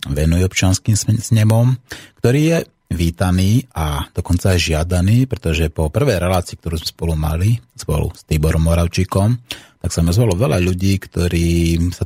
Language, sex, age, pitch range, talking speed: Slovak, male, 30-49, 80-100 Hz, 150 wpm